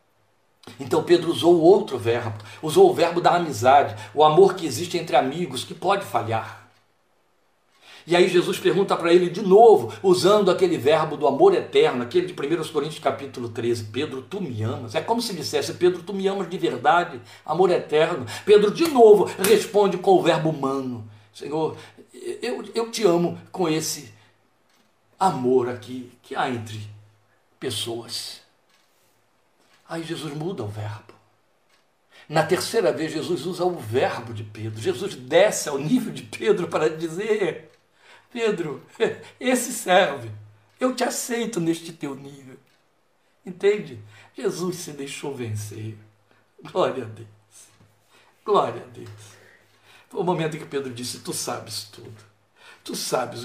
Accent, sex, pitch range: Brazilian, male, 120-200 Hz